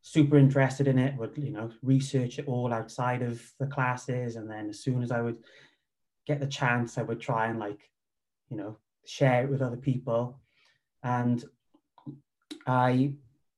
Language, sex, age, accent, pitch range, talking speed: English, male, 30-49, British, 115-140 Hz, 170 wpm